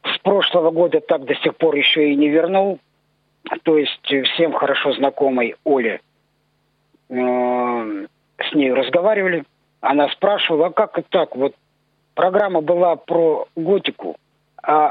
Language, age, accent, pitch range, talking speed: Russian, 50-69, native, 150-185 Hz, 130 wpm